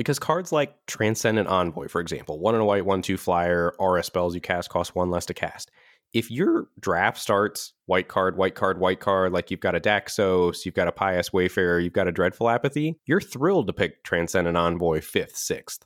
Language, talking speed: English, 215 wpm